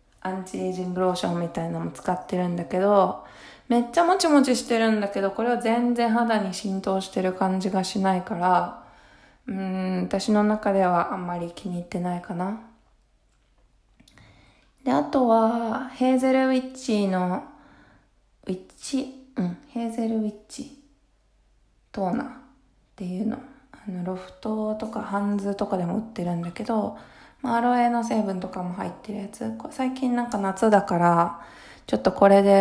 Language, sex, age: Japanese, female, 20-39